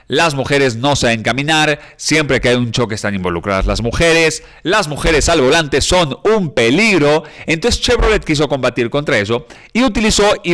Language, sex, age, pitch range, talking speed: Spanish, male, 40-59, 120-170 Hz, 170 wpm